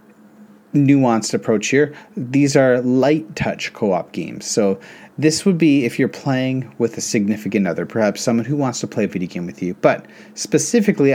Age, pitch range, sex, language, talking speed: 30-49, 105-140 Hz, male, English, 180 wpm